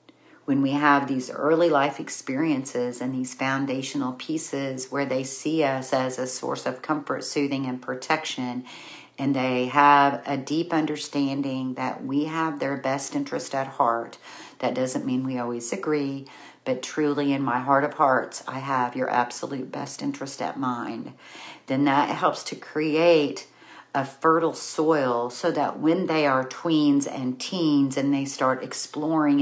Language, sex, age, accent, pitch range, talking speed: English, female, 50-69, American, 130-155 Hz, 155 wpm